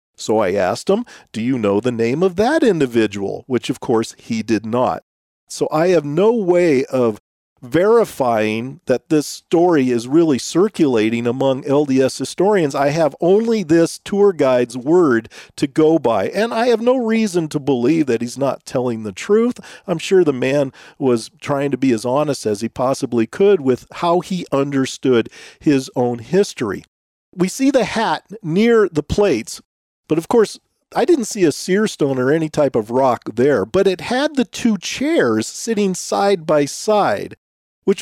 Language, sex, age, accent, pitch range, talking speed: English, male, 40-59, American, 135-195 Hz, 175 wpm